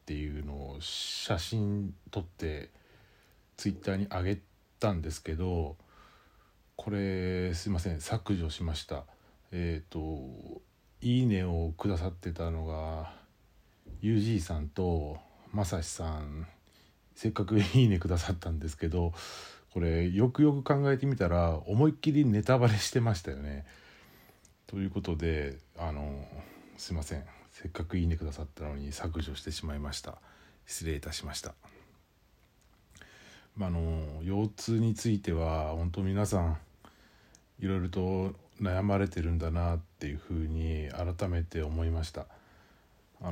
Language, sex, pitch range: Japanese, male, 80-100 Hz